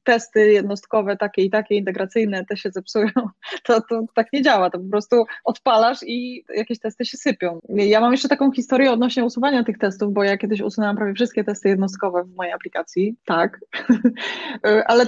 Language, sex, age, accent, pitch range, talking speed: Polish, female, 20-39, native, 210-255 Hz, 185 wpm